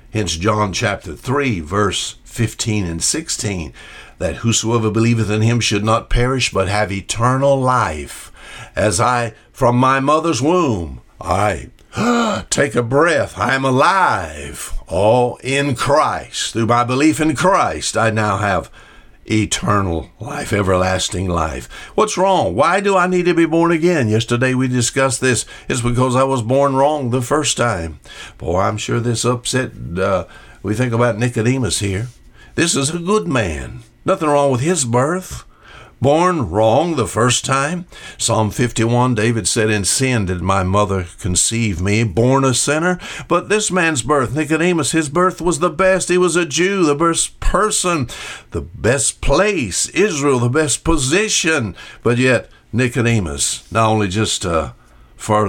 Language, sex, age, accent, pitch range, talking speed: English, male, 60-79, American, 105-150 Hz, 155 wpm